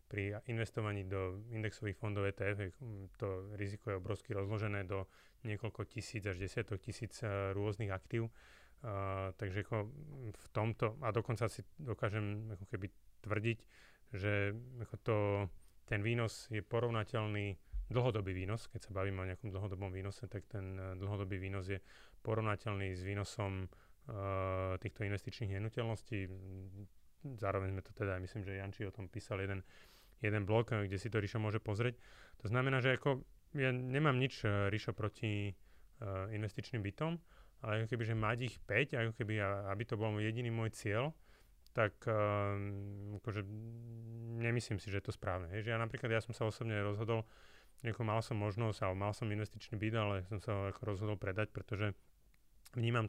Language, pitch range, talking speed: Slovak, 100-115 Hz, 150 wpm